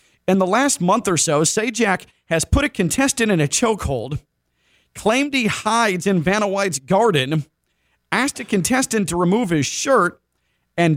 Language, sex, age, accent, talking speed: English, male, 40-59, American, 160 wpm